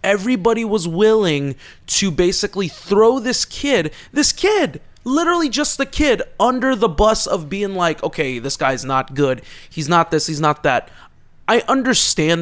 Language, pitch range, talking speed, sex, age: English, 145-195 Hz, 160 wpm, male, 20-39